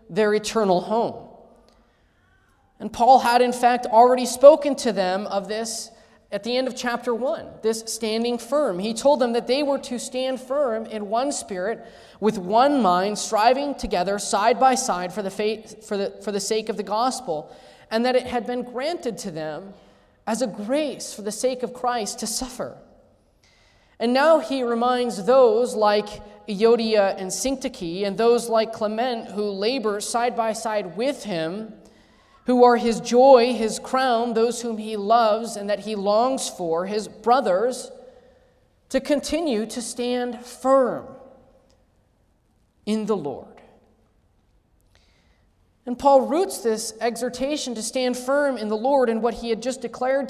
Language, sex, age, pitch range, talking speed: English, male, 20-39, 215-255 Hz, 160 wpm